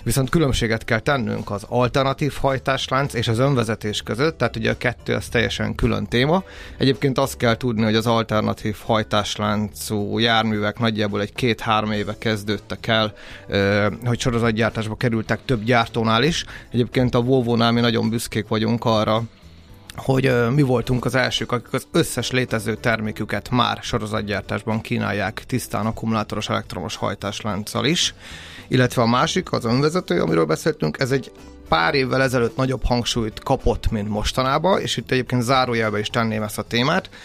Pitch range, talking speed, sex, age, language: 105-125 Hz, 150 wpm, male, 30-49, Hungarian